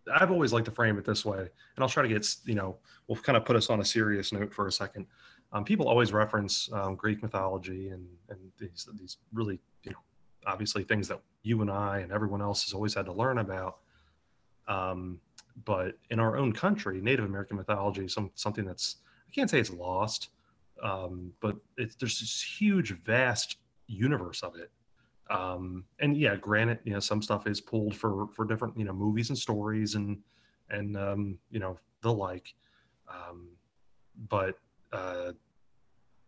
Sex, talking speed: male, 185 wpm